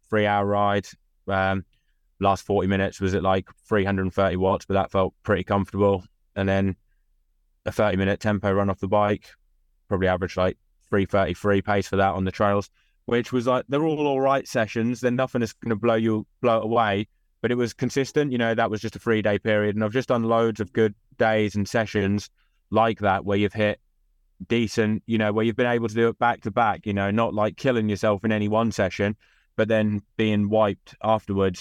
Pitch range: 95-110 Hz